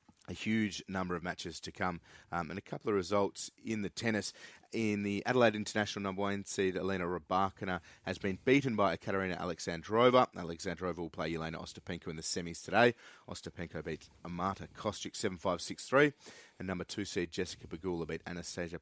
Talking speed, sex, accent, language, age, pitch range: 170 wpm, male, Australian, English, 30-49, 85-105 Hz